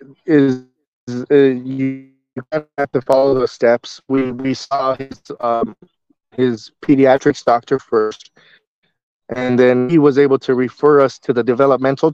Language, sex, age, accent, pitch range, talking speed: English, male, 20-39, American, 125-140 Hz, 140 wpm